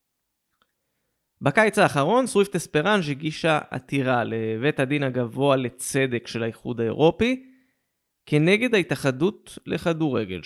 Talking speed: 90 wpm